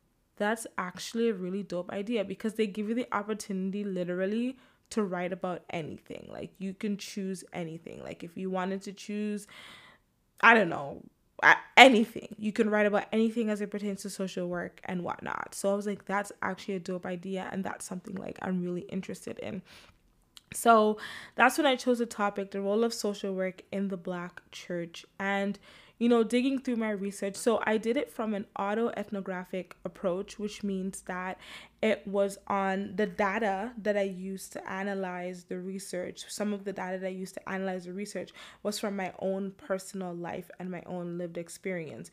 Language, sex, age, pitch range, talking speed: English, female, 20-39, 185-210 Hz, 185 wpm